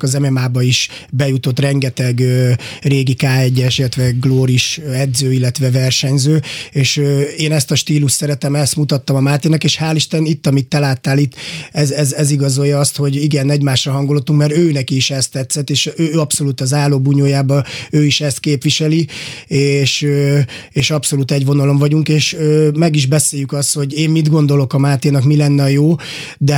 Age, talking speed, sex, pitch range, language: 30-49, 180 wpm, male, 140-155 Hz, Hungarian